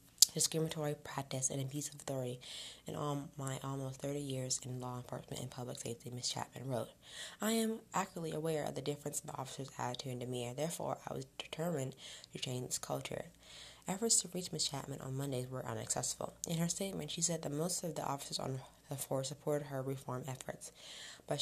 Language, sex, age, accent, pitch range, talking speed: English, female, 20-39, American, 130-155 Hz, 195 wpm